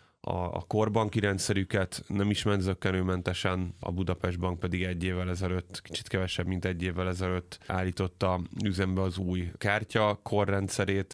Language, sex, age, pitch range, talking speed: Hungarian, male, 30-49, 90-100 Hz, 135 wpm